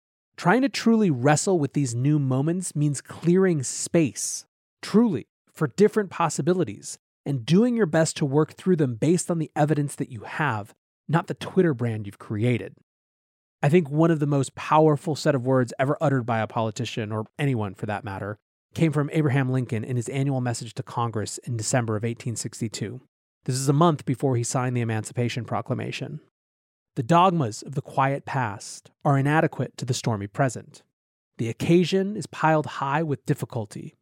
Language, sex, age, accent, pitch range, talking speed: English, male, 30-49, American, 120-155 Hz, 175 wpm